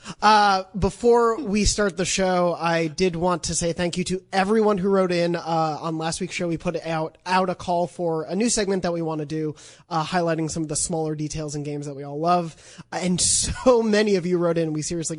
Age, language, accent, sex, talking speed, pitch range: 20-39, English, American, male, 235 wpm, 150-180 Hz